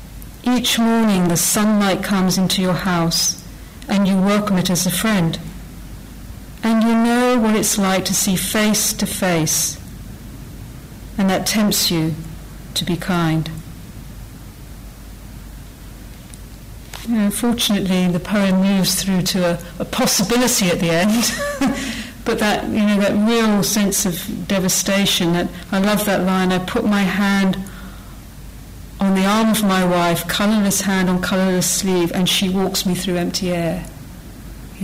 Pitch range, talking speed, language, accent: 180-210 Hz, 145 wpm, English, British